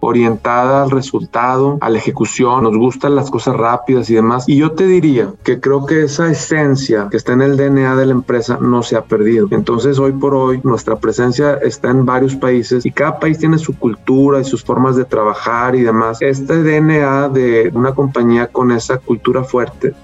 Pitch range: 115-135 Hz